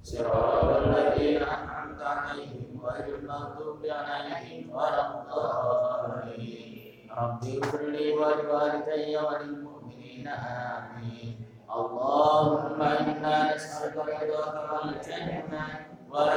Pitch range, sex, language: 145-155 Hz, male, Indonesian